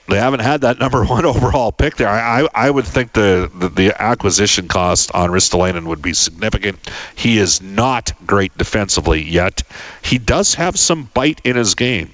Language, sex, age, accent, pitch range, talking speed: English, male, 50-69, American, 90-120 Hz, 190 wpm